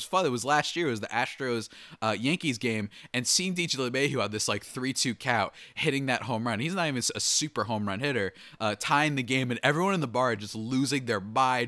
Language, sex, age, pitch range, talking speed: English, male, 20-39, 105-135 Hz, 235 wpm